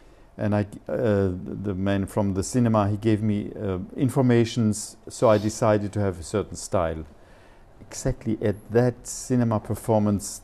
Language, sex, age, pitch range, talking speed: English, male, 50-69, 95-115 Hz, 150 wpm